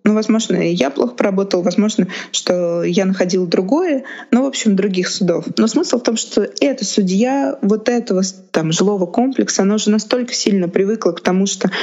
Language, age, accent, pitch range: Russian, 20-39, native, 180-220 Hz